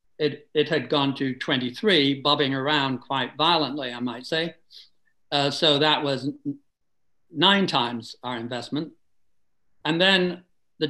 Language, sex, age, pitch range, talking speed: English, male, 60-79, 135-170 Hz, 130 wpm